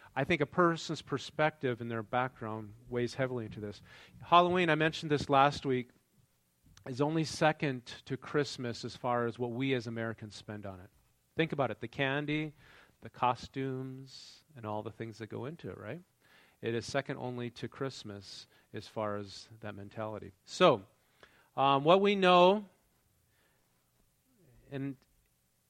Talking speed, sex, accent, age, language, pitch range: 155 wpm, male, American, 40-59, English, 115-150 Hz